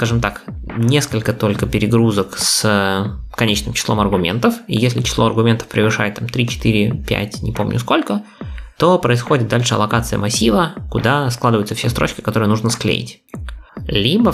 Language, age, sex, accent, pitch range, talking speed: Russian, 20-39, male, native, 105-120 Hz, 140 wpm